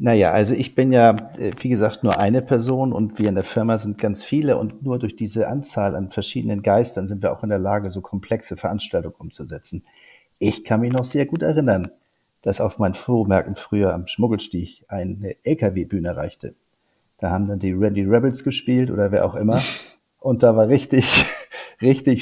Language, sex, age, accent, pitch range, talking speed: German, male, 40-59, German, 100-120 Hz, 185 wpm